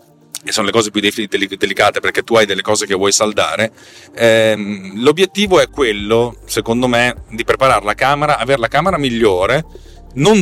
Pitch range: 105-135 Hz